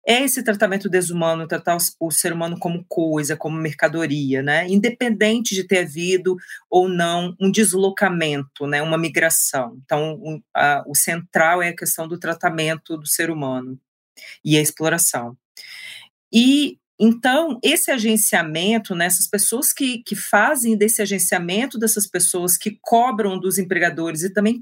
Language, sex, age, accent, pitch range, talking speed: Portuguese, female, 40-59, Brazilian, 165-225 Hz, 145 wpm